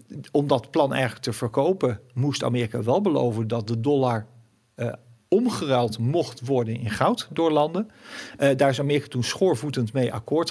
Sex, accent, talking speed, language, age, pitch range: male, Dutch, 165 wpm, Dutch, 50-69, 115-140 Hz